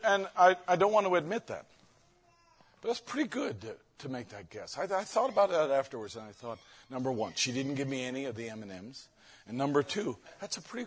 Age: 50-69